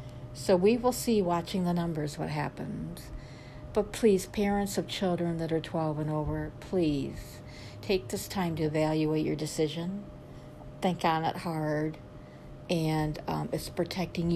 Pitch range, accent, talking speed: 150-170 Hz, American, 145 wpm